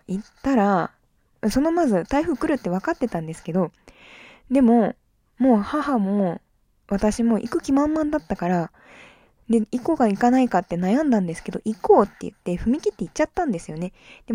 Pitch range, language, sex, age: 175-235 Hz, Japanese, female, 20-39